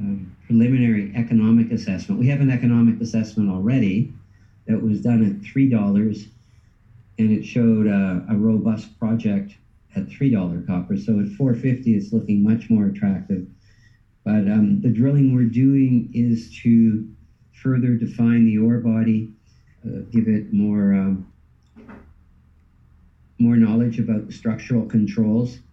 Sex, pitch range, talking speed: male, 100-115 Hz, 130 wpm